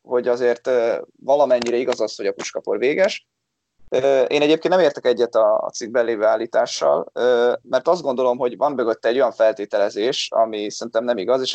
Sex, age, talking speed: male, 20-39, 160 wpm